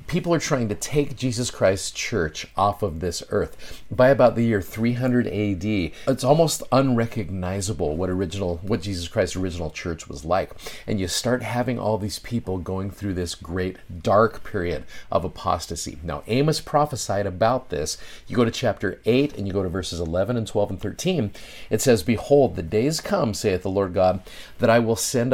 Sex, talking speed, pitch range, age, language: male, 185 wpm, 95-125 Hz, 40-59, English